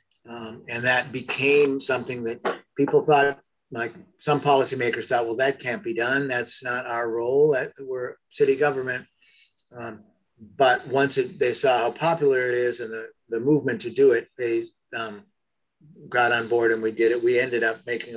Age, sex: 50-69, male